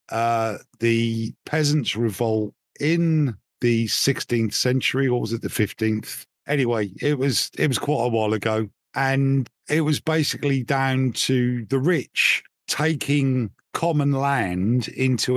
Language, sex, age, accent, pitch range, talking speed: English, male, 50-69, British, 115-140 Hz, 135 wpm